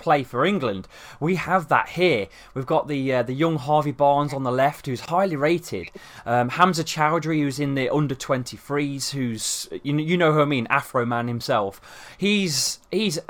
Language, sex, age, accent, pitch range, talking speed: English, male, 20-39, British, 130-165 Hz, 195 wpm